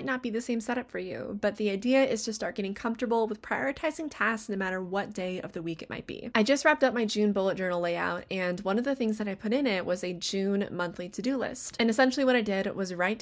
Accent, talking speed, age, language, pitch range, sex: American, 275 wpm, 20-39, English, 185-245 Hz, female